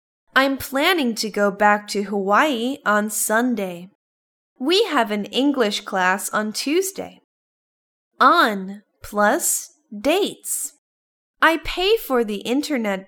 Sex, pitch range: female, 200-275 Hz